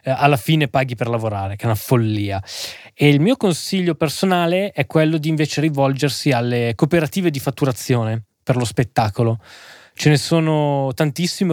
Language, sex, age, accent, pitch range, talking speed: Italian, male, 20-39, native, 120-155 Hz, 155 wpm